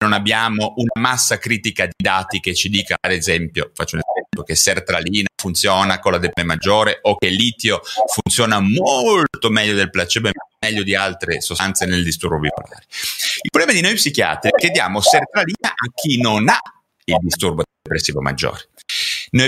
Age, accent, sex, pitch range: 30-49, native, male, 90-140 Hz